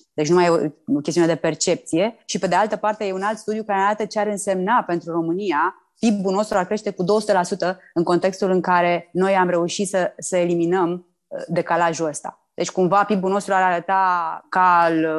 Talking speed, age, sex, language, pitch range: 200 wpm, 20-39, female, Romanian, 175-210 Hz